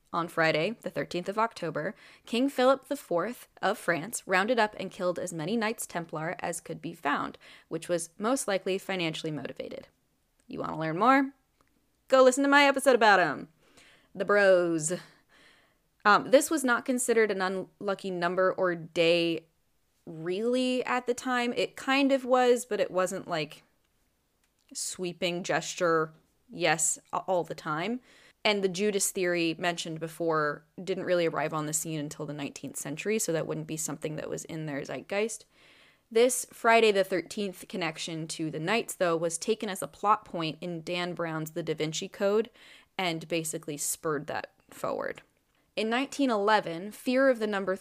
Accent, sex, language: American, female, English